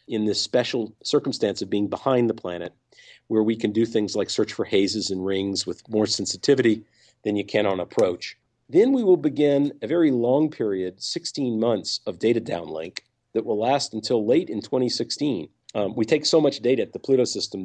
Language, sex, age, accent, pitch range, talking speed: English, male, 50-69, American, 105-130 Hz, 195 wpm